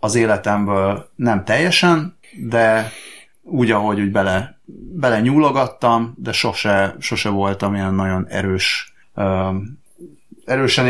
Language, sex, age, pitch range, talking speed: Hungarian, male, 30-49, 100-120 Hz, 110 wpm